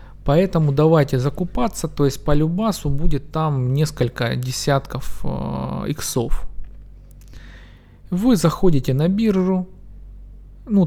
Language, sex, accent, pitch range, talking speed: Russian, male, native, 130-170 Hz, 100 wpm